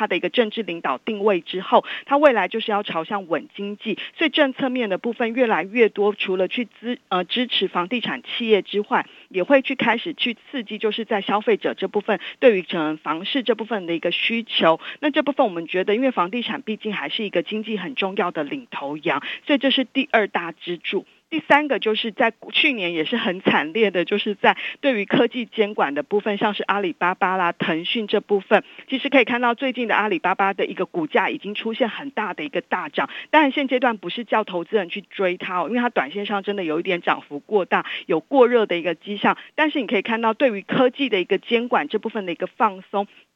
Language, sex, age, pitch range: Chinese, female, 40-59, 185-250 Hz